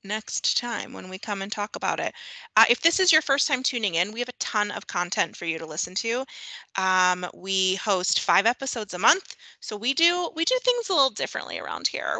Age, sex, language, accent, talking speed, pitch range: 30-49, female, English, American, 230 wpm, 185-245 Hz